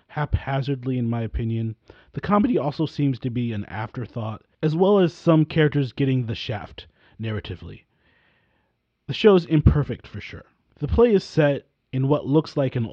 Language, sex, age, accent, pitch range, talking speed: English, male, 30-49, American, 110-150 Hz, 165 wpm